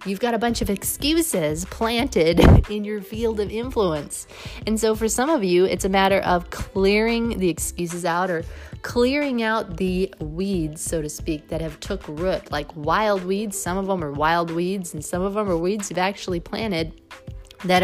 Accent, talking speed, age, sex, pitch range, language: American, 190 wpm, 30-49, female, 165-200 Hz, English